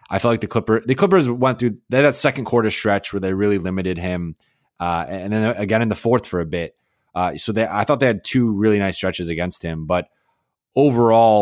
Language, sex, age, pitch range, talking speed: English, male, 20-39, 85-115 Hz, 235 wpm